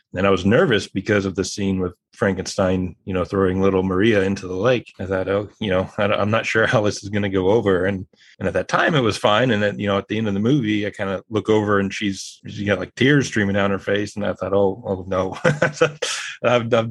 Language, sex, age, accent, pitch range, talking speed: English, male, 30-49, American, 95-105 Hz, 265 wpm